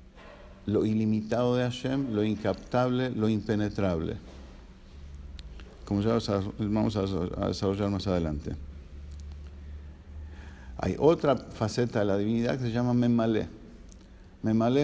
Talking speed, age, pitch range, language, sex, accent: 105 wpm, 50-69, 95-115 Hz, English, male, Argentinian